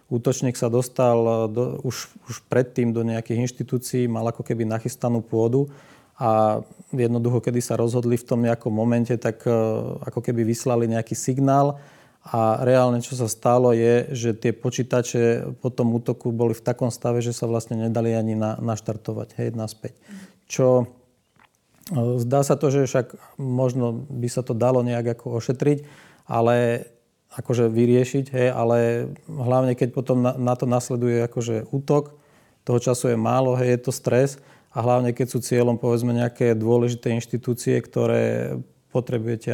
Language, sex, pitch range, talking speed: Slovak, male, 115-125 Hz, 155 wpm